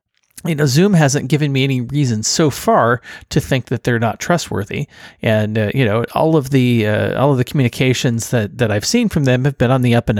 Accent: American